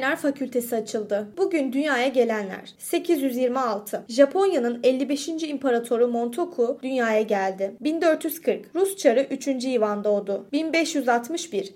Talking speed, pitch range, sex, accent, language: 90 wpm, 230-305 Hz, female, native, Turkish